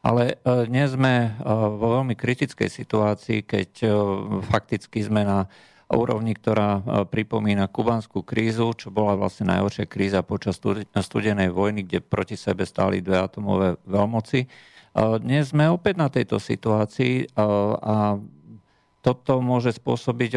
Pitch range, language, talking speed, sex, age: 100-115 Hz, Slovak, 120 wpm, male, 50-69